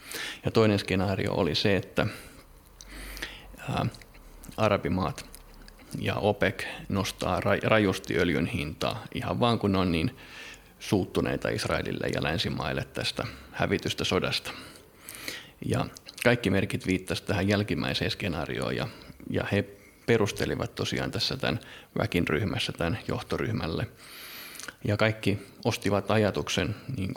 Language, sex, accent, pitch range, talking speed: Finnish, male, native, 95-110 Hz, 105 wpm